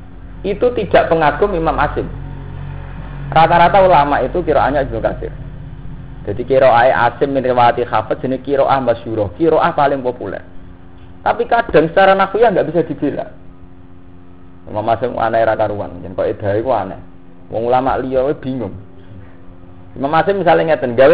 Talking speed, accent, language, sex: 135 wpm, native, Indonesian, male